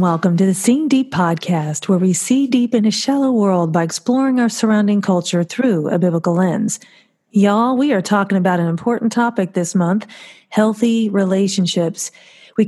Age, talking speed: 40-59, 170 wpm